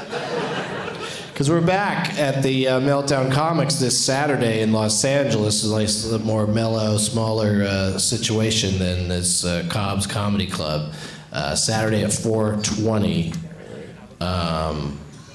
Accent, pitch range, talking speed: American, 110-165 Hz, 120 wpm